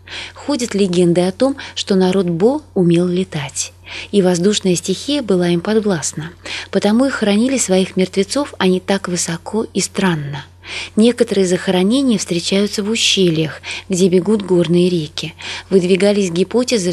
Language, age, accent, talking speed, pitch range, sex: Russian, 20-39, native, 130 wpm, 175-220 Hz, female